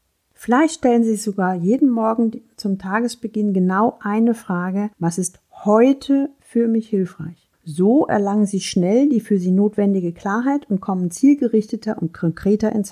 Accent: German